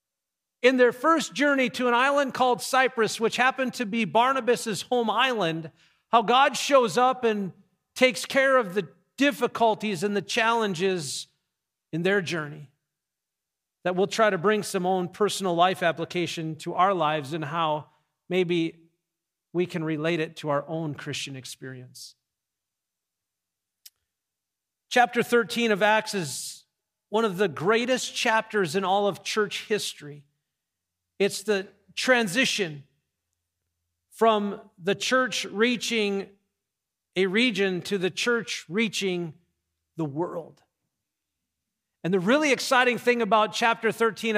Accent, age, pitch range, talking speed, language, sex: American, 40-59, 165-230 Hz, 130 wpm, English, male